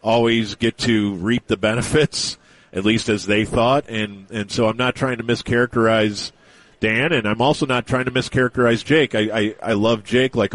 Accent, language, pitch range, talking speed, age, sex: American, English, 105-125 Hz, 195 wpm, 40-59, male